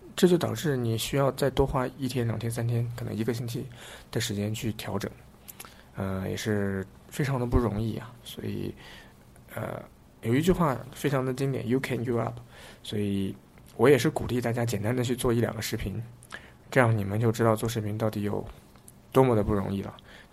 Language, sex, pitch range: Chinese, male, 105-130 Hz